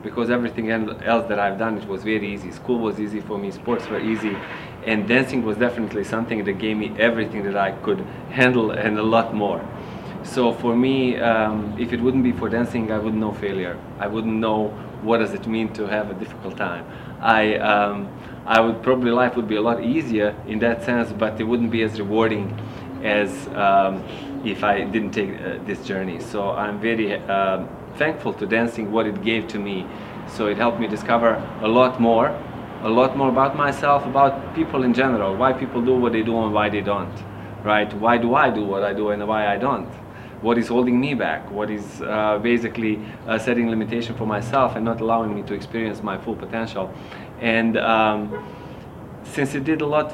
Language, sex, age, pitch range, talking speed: English, male, 20-39, 105-120 Hz, 205 wpm